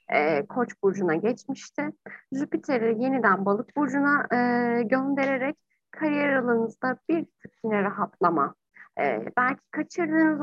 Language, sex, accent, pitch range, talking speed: Turkish, female, native, 200-280 Hz, 85 wpm